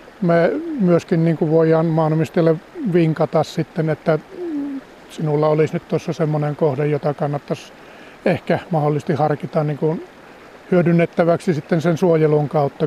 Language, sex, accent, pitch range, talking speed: Finnish, male, native, 150-170 Hz, 115 wpm